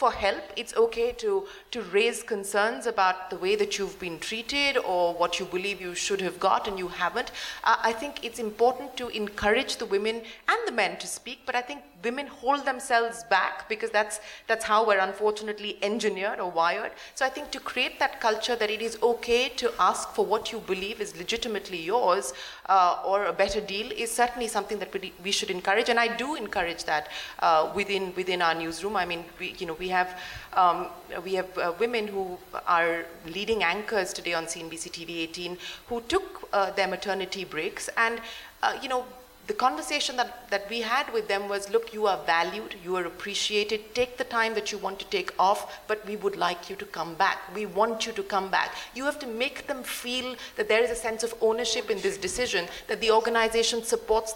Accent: Indian